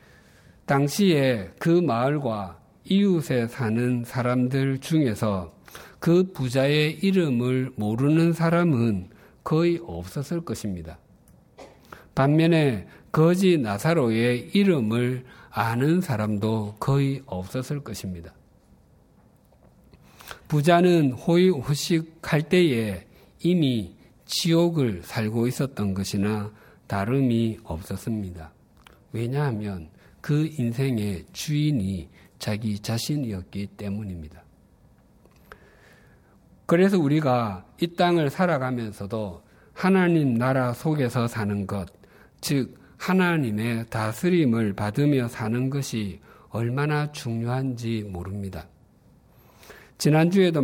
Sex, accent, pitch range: male, native, 105-150 Hz